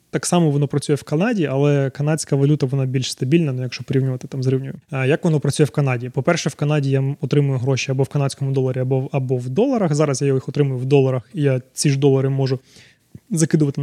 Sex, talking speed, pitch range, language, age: male, 220 wpm, 135-150 Hz, Ukrainian, 20-39